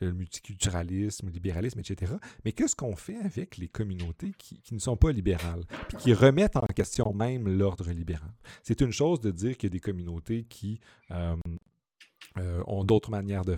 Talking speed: 190 wpm